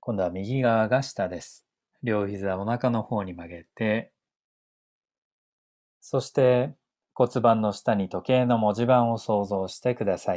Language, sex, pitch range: Japanese, male, 90-120 Hz